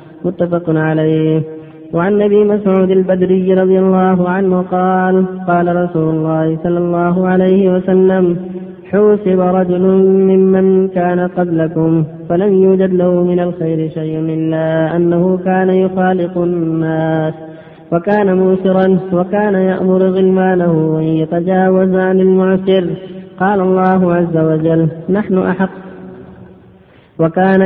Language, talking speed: Arabic, 105 wpm